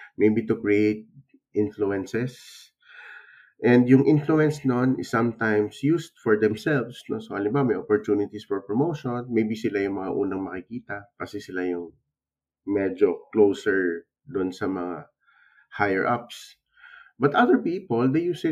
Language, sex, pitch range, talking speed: Filipino, male, 100-135 Hz, 135 wpm